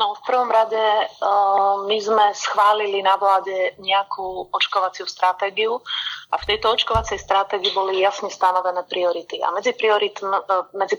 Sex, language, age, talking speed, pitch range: female, Slovak, 30-49, 140 wpm, 180-210 Hz